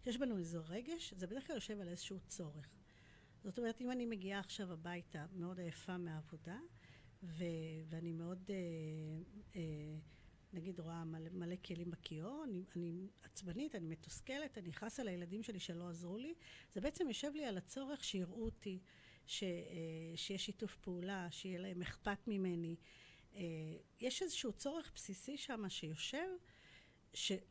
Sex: female